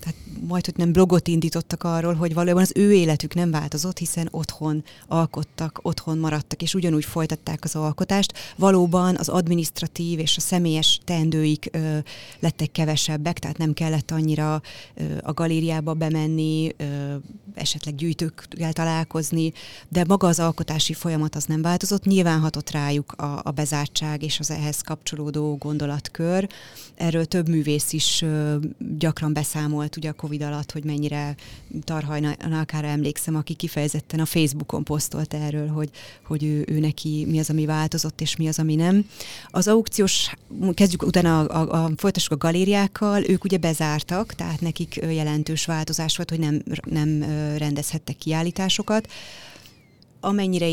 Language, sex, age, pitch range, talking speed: Hungarian, female, 30-49, 150-170 Hz, 150 wpm